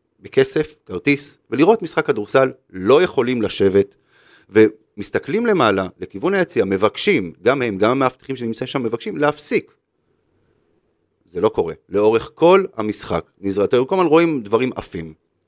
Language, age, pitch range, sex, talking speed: Hebrew, 30-49, 100-145 Hz, male, 130 wpm